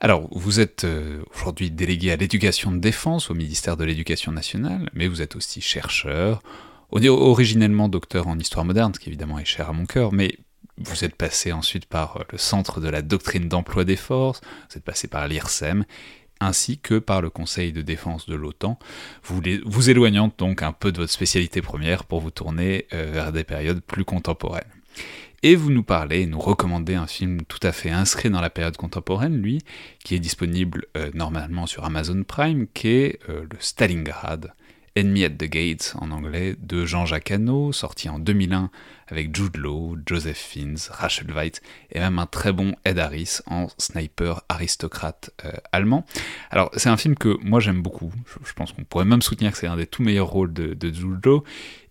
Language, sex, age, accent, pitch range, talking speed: French, male, 30-49, French, 80-105 Hz, 190 wpm